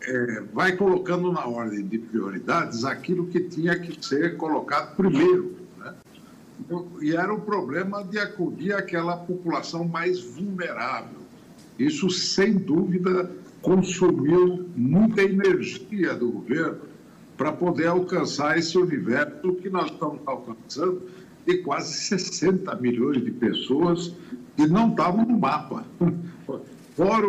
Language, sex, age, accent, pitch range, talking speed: Portuguese, male, 60-79, Brazilian, 155-195 Hz, 115 wpm